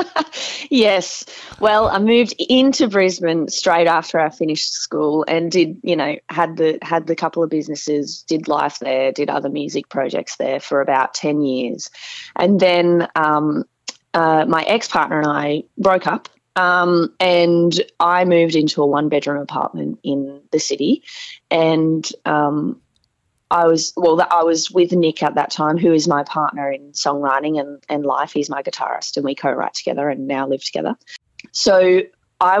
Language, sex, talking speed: English, female, 165 wpm